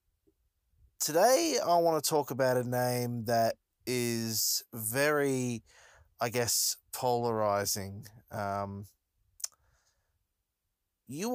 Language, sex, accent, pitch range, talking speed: English, male, Australian, 100-120 Hz, 85 wpm